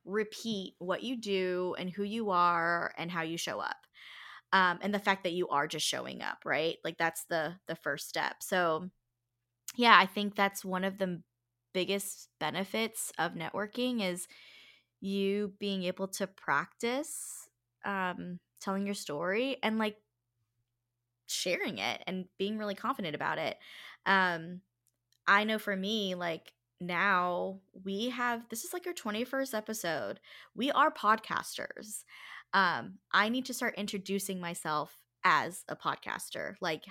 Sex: female